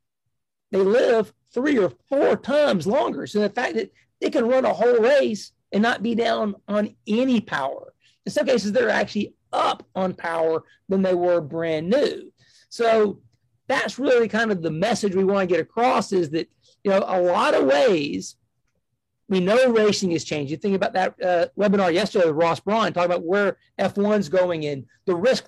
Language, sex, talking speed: English, male, 190 wpm